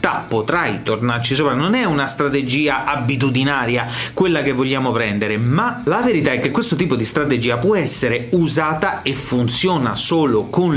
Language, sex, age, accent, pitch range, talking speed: Italian, male, 30-49, native, 130-180 Hz, 155 wpm